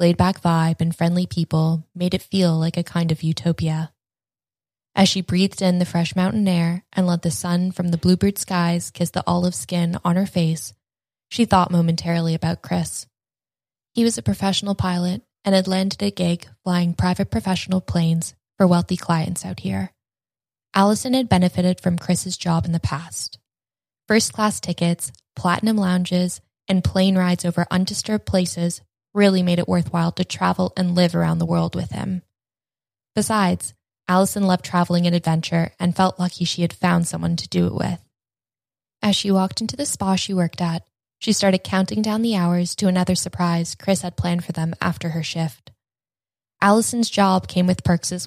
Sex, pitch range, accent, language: female, 160-185 Hz, American, English